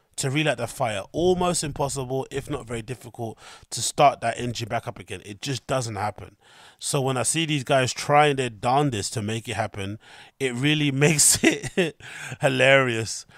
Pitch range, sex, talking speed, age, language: 120-150 Hz, male, 175 wpm, 30-49, English